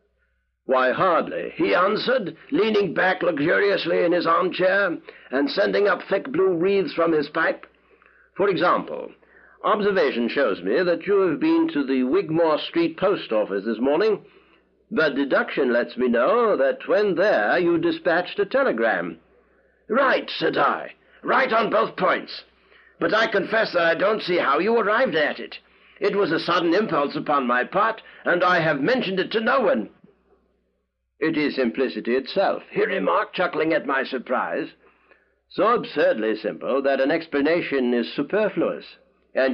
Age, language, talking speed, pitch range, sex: 60-79, English, 155 wpm, 130-200 Hz, male